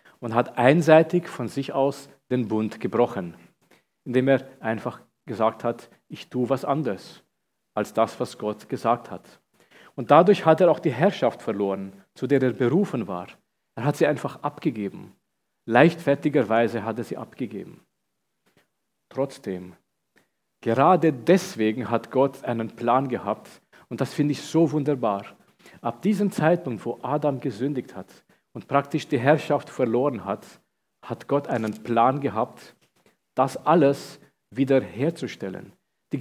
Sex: male